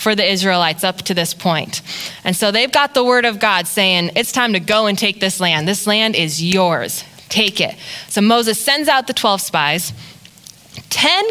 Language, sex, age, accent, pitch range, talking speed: English, female, 20-39, American, 170-220 Hz, 200 wpm